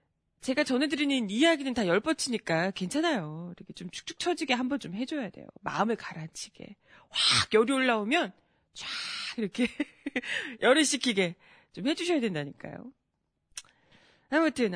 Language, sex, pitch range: Korean, female, 195-305 Hz